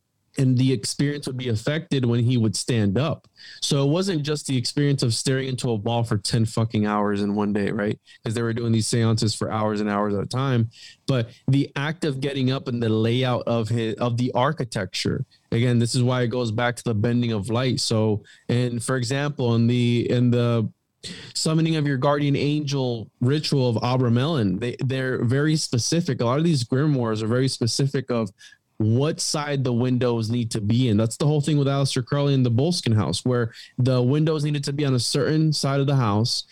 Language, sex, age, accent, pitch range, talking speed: English, male, 20-39, American, 115-140 Hz, 215 wpm